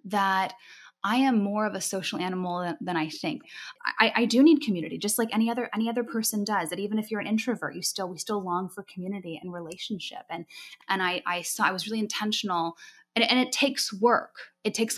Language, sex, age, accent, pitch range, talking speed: English, female, 10-29, American, 185-235 Hz, 220 wpm